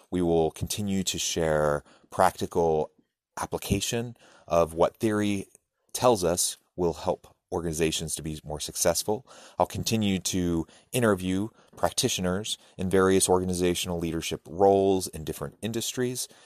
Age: 30-49